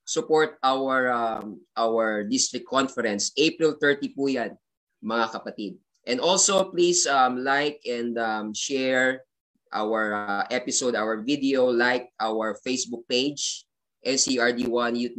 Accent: native